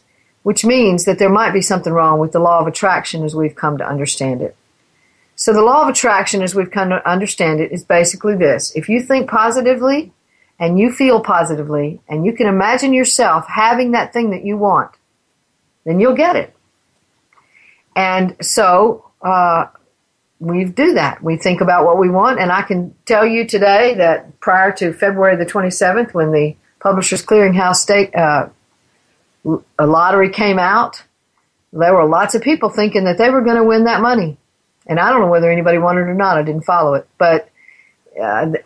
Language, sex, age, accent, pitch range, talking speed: English, female, 50-69, American, 165-215 Hz, 185 wpm